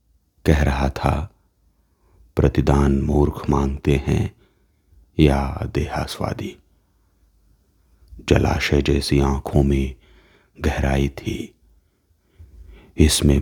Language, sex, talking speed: Hindi, male, 70 wpm